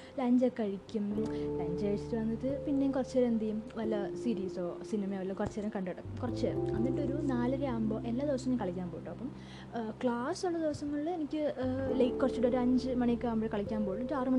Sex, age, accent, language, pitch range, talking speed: female, 20-39, native, Malayalam, 185-260 Hz, 185 wpm